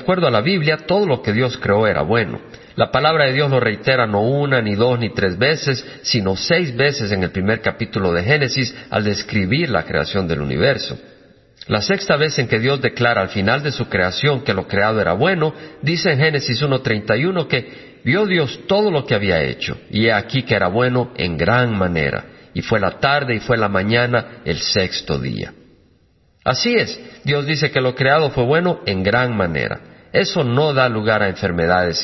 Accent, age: Mexican, 50-69